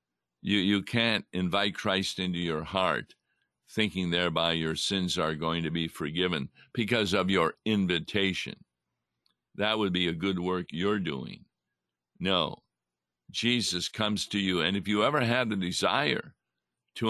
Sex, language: male, English